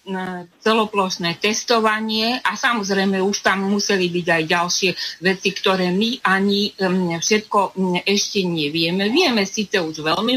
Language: Slovak